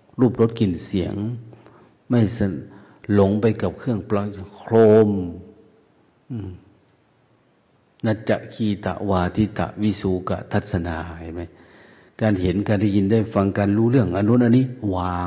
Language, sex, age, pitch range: Thai, male, 50-69, 95-115 Hz